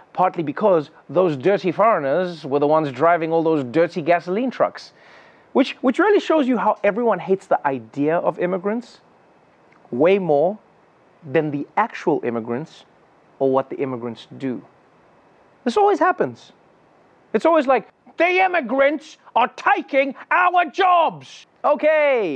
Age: 30-49